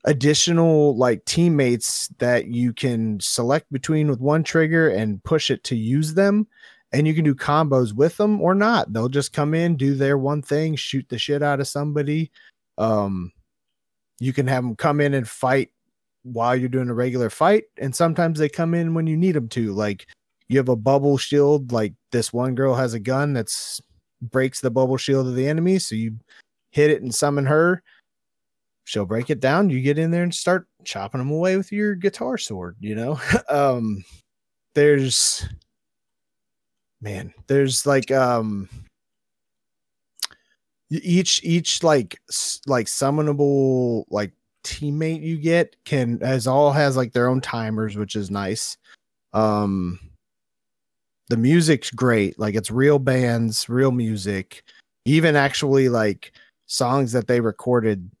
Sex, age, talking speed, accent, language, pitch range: male, 30-49, 160 wpm, American, English, 115-150 Hz